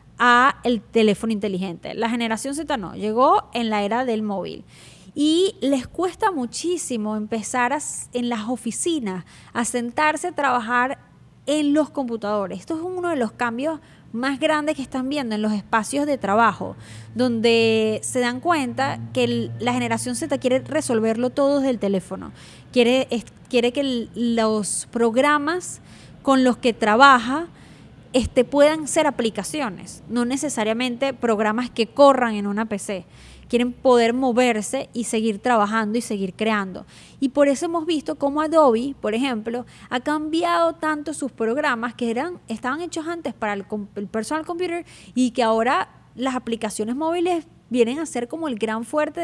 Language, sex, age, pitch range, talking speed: Spanish, female, 20-39, 225-285 Hz, 155 wpm